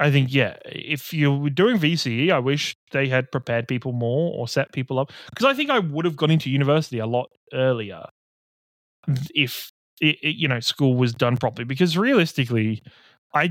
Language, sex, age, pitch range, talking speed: English, male, 20-39, 120-150 Hz, 190 wpm